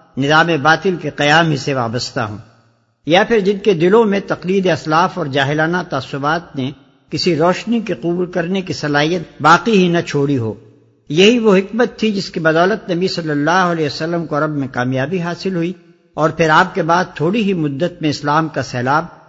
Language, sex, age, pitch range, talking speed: Urdu, male, 60-79, 140-185 Hz, 195 wpm